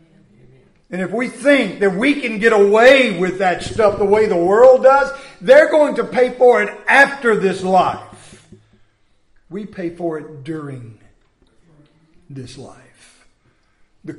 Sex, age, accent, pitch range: male, 50-69, American, 150-235 Hz